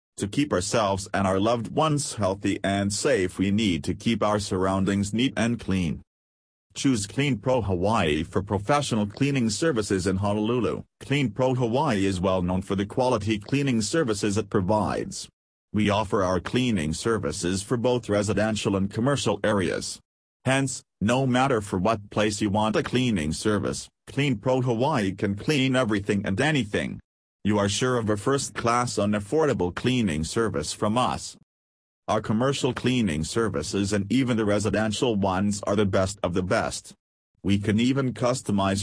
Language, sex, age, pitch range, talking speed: English, male, 40-59, 95-120 Hz, 160 wpm